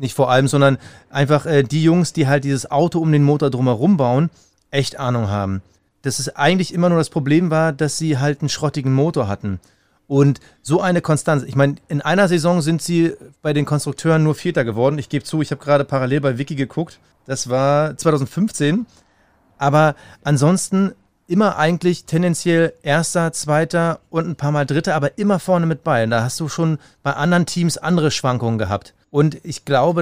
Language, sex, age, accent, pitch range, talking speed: German, male, 30-49, German, 140-175 Hz, 190 wpm